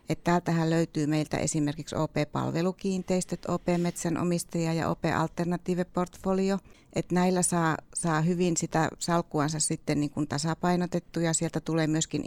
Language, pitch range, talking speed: Finnish, 150-175 Hz, 105 wpm